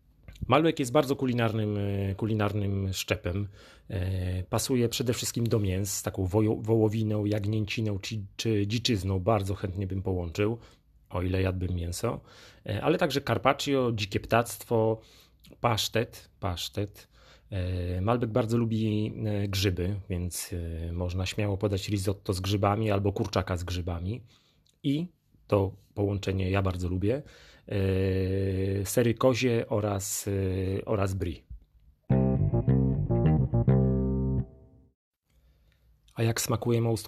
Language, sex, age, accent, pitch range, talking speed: Polish, male, 30-49, native, 95-115 Hz, 105 wpm